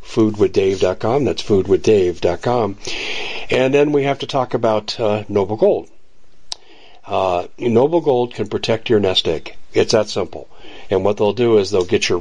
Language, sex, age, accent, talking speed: English, male, 50-69, American, 155 wpm